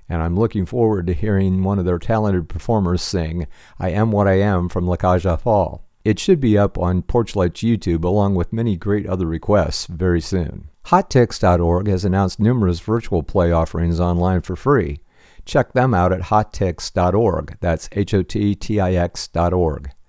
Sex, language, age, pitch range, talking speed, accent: male, English, 50-69, 85-105 Hz, 160 wpm, American